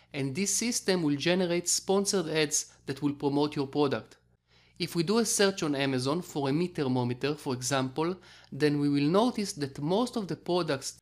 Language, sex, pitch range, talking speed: English, male, 145-185 Hz, 185 wpm